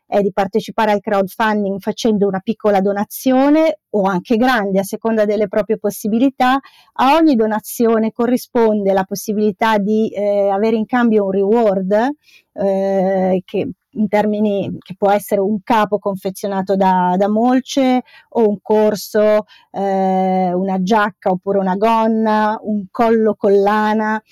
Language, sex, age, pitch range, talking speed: Italian, female, 30-49, 195-220 Hz, 135 wpm